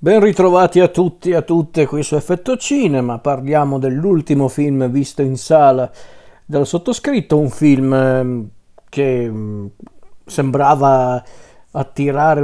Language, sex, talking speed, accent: Italian, male, 115 wpm, native